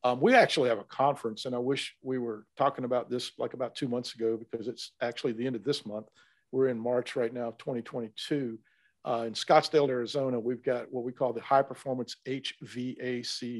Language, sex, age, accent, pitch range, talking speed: English, male, 50-69, American, 120-130 Hz, 205 wpm